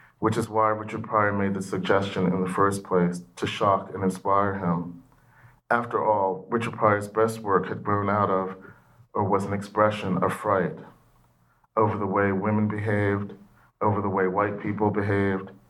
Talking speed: 170 wpm